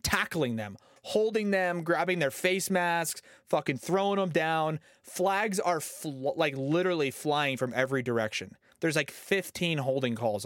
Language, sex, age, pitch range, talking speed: English, male, 30-49, 130-180 Hz, 145 wpm